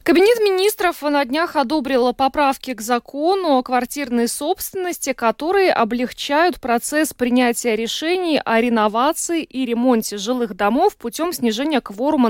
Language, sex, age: Russian, female, 20-39